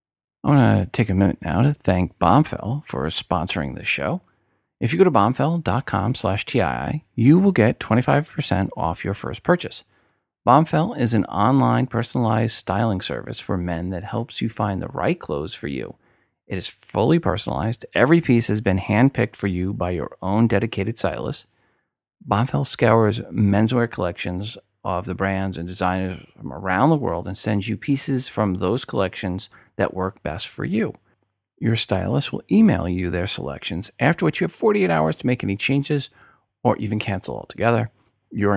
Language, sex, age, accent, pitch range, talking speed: English, male, 40-59, American, 95-120 Hz, 170 wpm